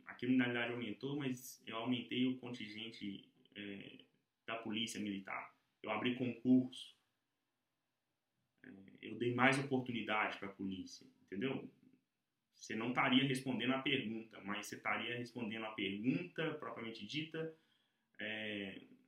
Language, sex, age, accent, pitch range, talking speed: English, male, 20-39, Brazilian, 115-135 Hz, 125 wpm